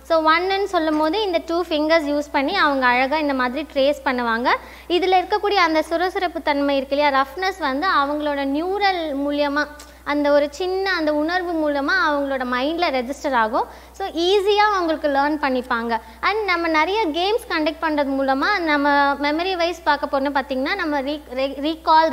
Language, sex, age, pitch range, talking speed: Tamil, female, 20-39, 275-340 Hz, 155 wpm